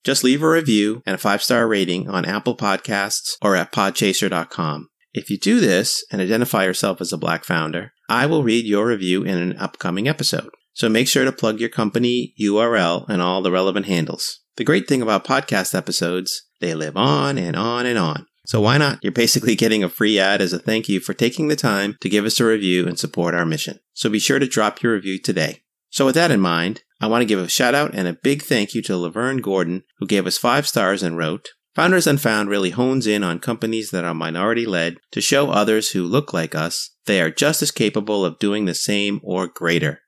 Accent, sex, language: American, male, English